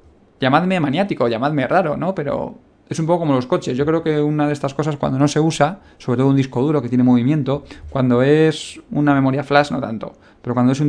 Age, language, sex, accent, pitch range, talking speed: 20-39, Spanish, male, Spanish, 125-150 Hz, 230 wpm